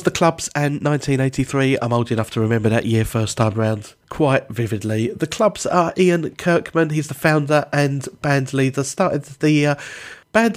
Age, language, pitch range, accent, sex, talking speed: 40-59, English, 125-165 Hz, British, male, 175 wpm